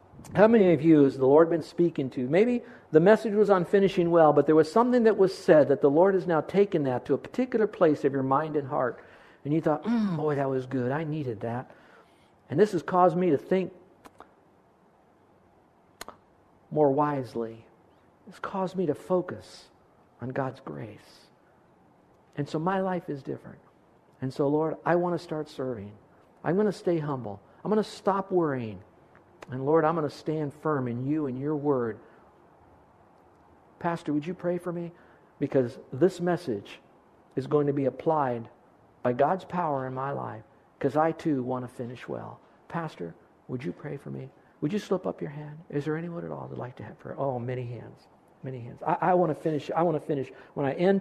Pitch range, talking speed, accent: 135-175 Hz, 200 wpm, American